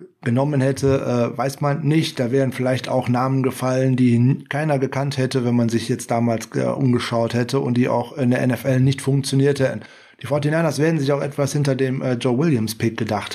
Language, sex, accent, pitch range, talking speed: German, male, German, 125-150 Hz, 185 wpm